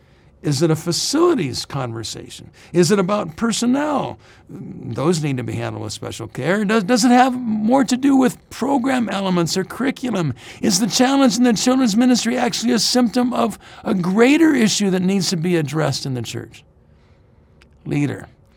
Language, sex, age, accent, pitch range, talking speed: English, male, 60-79, American, 135-220 Hz, 170 wpm